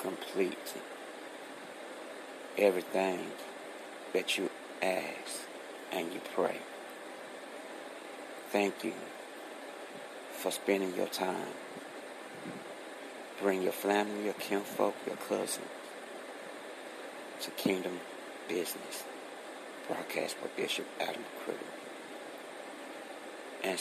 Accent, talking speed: American, 75 wpm